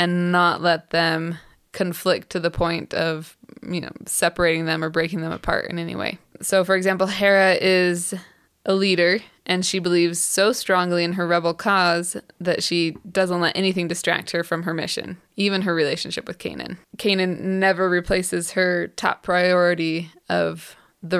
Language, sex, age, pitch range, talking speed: English, female, 20-39, 175-190 Hz, 165 wpm